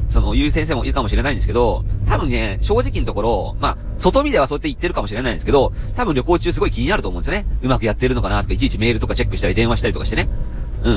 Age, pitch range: 30-49, 100-130 Hz